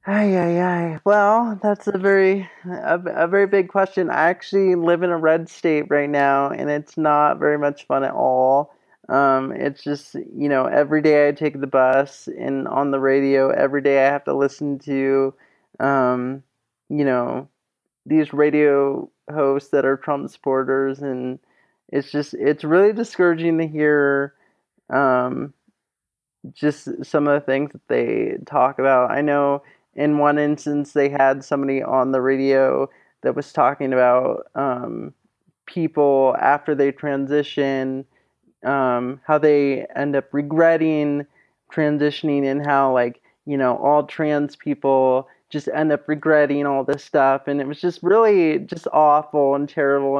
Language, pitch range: English, 135-155 Hz